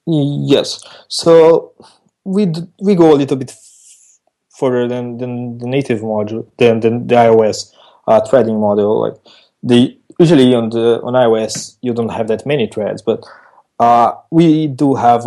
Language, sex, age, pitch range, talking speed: English, male, 20-39, 115-140 Hz, 160 wpm